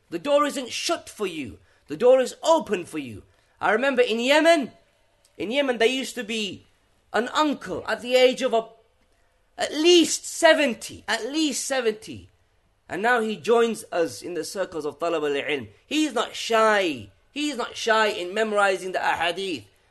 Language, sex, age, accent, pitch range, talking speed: English, male, 30-49, British, 215-275 Hz, 170 wpm